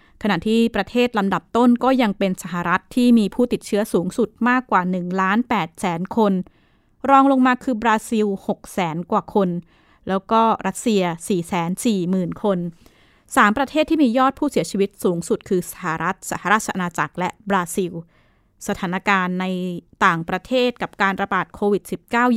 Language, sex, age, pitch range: Thai, female, 20-39, 185-230 Hz